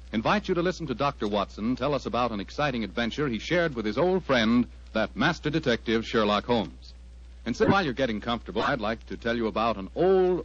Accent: American